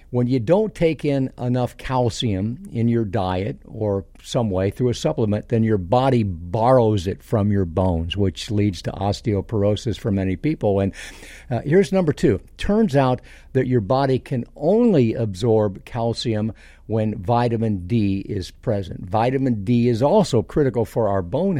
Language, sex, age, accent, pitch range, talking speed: English, male, 50-69, American, 105-125 Hz, 160 wpm